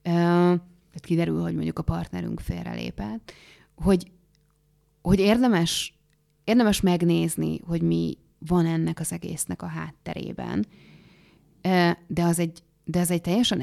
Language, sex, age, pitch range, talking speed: Hungarian, female, 30-49, 125-175 Hz, 110 wpm